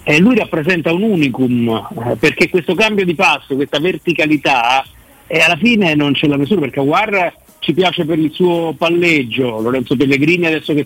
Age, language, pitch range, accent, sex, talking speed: 50-69, Italian, 145-165 Hz, native, male, 175 wpm